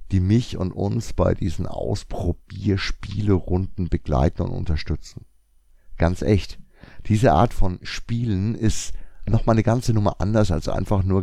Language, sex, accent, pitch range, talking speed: German, male, German, 90-110 Hz, 135 wpm